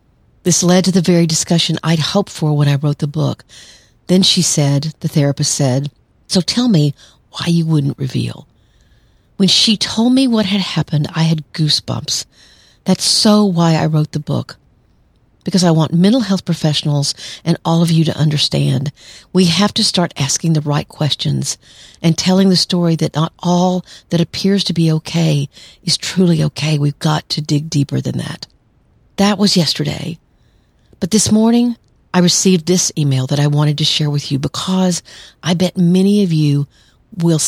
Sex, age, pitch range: female, 50-69, 145-180 Hz